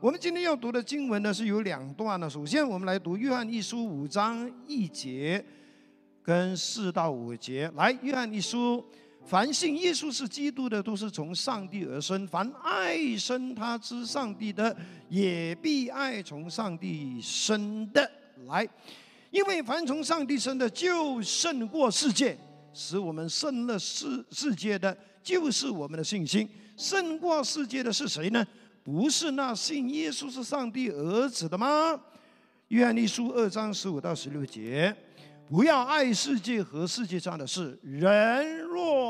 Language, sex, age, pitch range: Chinese, male, 50-69, 180-270 Hz